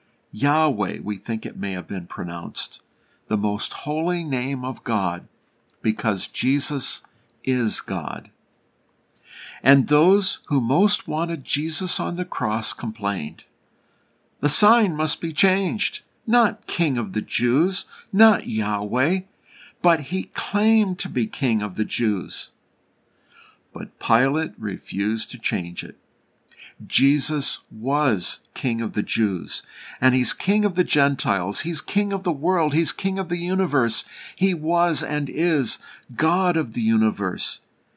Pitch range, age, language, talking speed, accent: 110-175 Hz, 50-69, English, 135 wpm, American